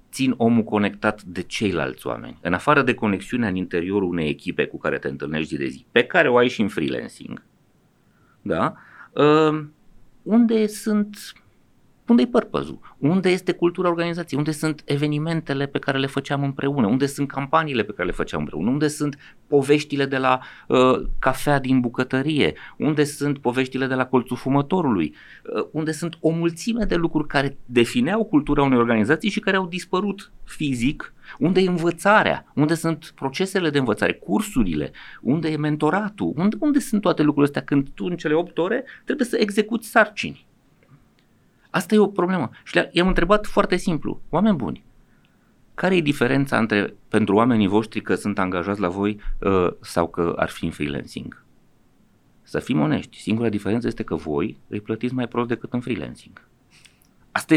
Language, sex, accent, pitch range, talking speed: Romanian, male, native, 120-170 Hz, 165 wpm